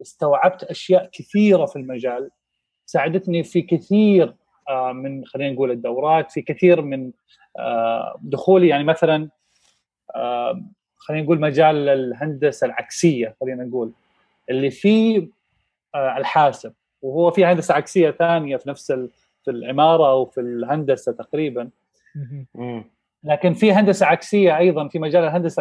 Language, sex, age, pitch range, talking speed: Arabic, male, 30-49, 140-190 Hz, 115 wpm